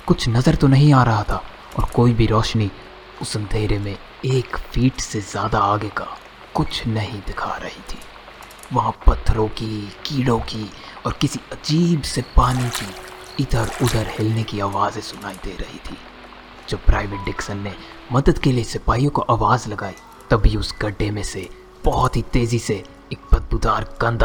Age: 30-49